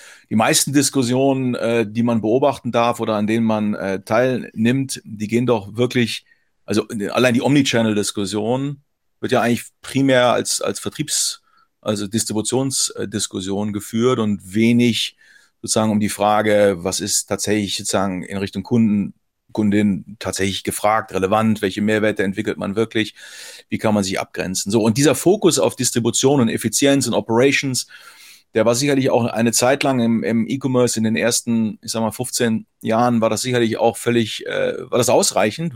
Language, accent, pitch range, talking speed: German, German, 105-120 Hz, 160 wpm